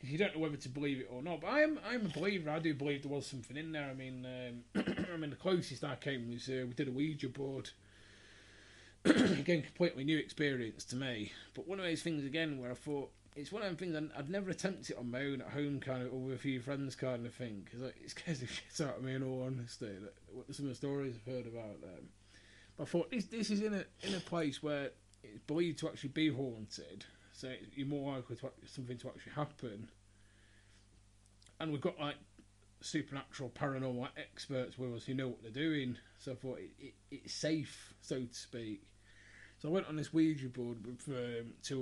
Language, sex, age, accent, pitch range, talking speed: English, male, 30-49, British, 110-145 Hz, 235 wpm